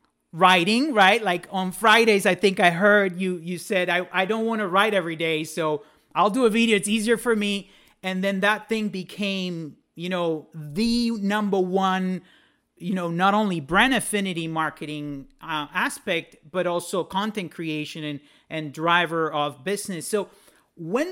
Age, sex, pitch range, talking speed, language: 40-59, male, 165-210 Hz, 170 wpm, English